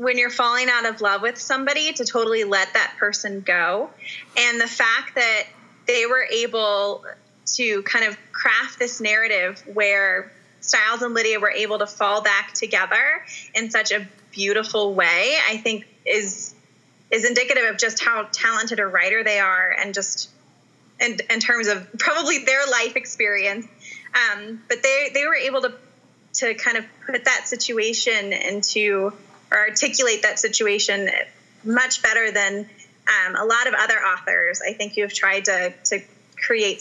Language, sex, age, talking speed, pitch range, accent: English, female, 20-39, 165 wpm, 205-250 Hz, American